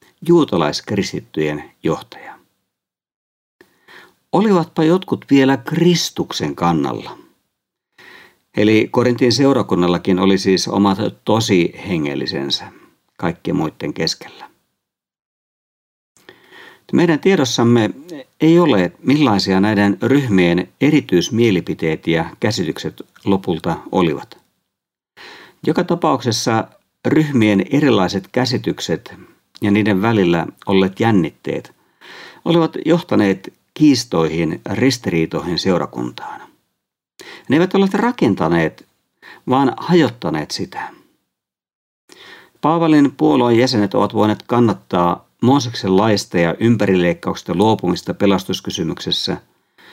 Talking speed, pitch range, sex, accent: 75 wpm, 95-135 Hz, male, native